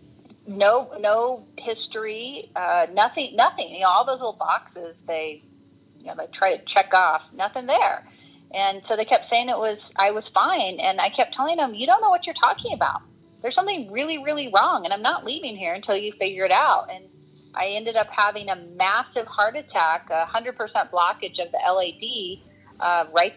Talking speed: 200 wpm